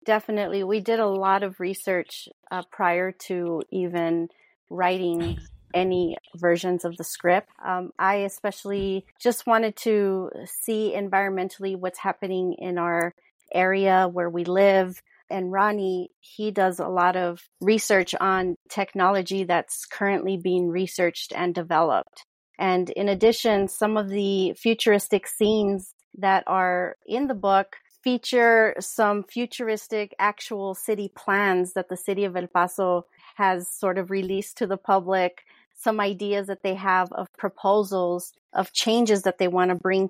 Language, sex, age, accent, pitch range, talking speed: English, female, 30-49, American, 180-205 Hz, 140 wpm